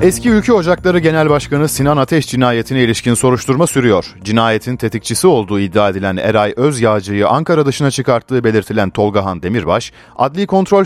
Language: Turkish